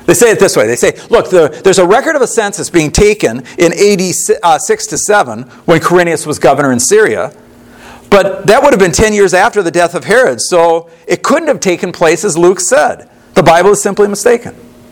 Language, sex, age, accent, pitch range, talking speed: English, male, 50-69, American, 170-220 Hz, 205 wpm